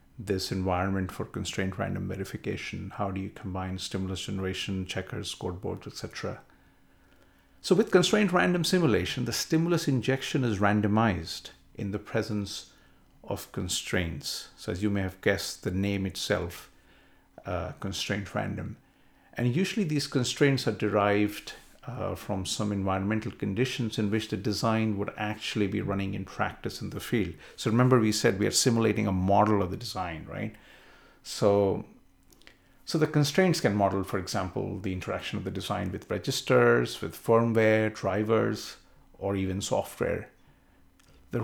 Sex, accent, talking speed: male, Indian, 145 wpm